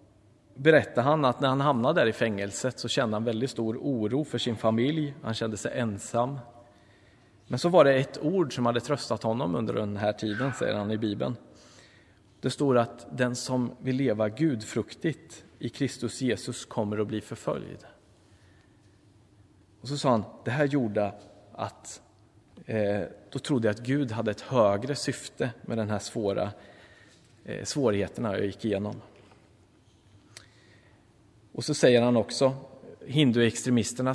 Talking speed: 150 wpm